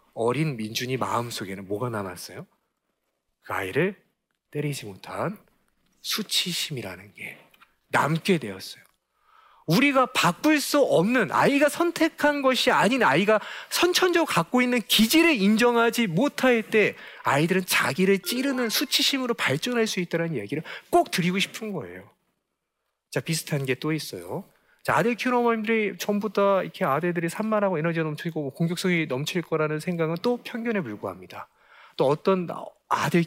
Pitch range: 150-240 Hz